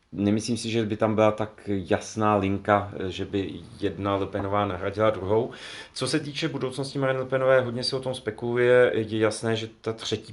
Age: 40-59